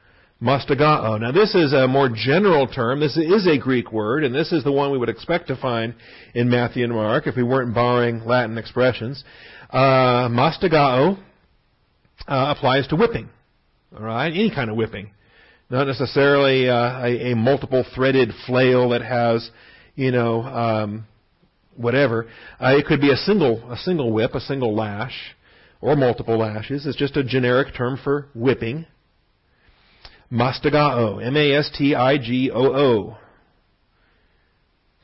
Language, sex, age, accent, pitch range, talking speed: English, male, 50-69, American, 115-145 Hz, 145 wpm